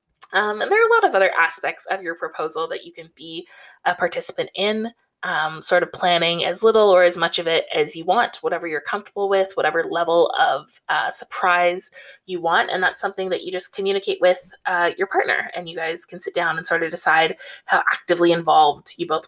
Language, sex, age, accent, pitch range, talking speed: English, female, 20-39, American, 165-240 Hz, 220 wpm